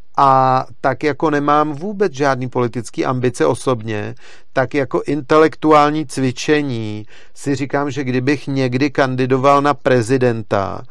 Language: Czech